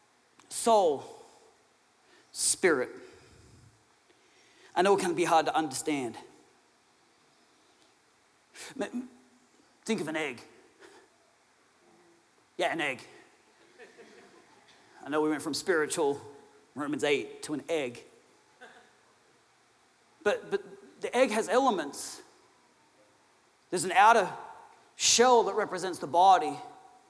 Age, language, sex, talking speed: 40-59, English, male, 95 wpm